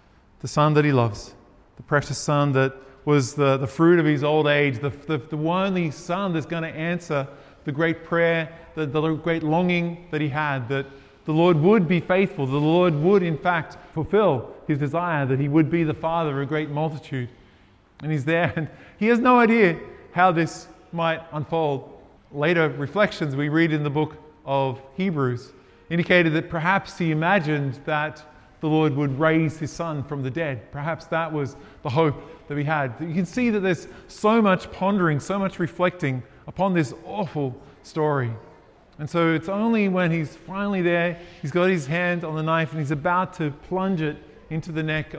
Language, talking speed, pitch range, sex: English, 190 wpm, 140-170 Hz, male